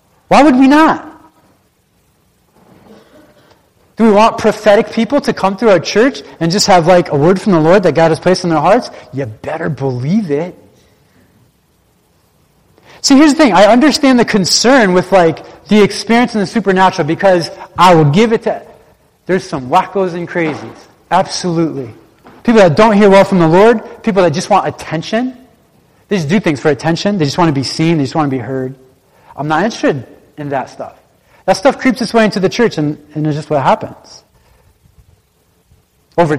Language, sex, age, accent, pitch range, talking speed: English, male, 30-49, American, 155-210 Hz, 185 wpm